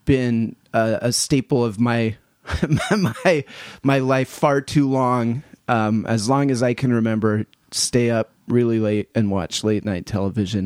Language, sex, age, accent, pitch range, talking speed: English, male, 30-49, American, 115-140 Hz, 160 wpm